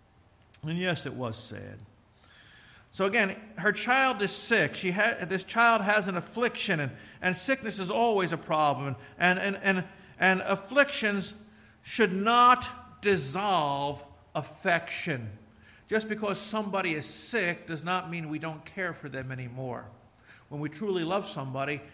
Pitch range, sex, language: 130-170 Hz, male, English